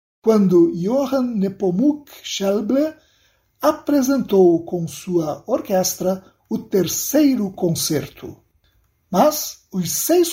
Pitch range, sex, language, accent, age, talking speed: 175-265 Hz, male, Portuguese, Brazilian, 60-79, 80 wpm